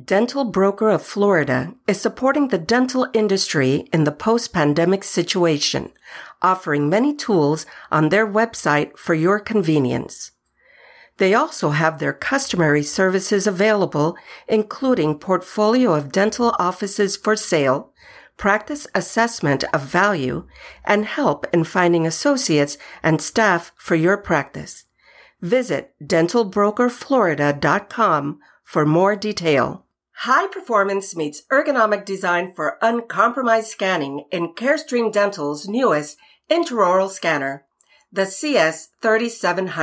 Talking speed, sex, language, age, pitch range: 105 wpm, female, English, 50-69, 160-230 Hz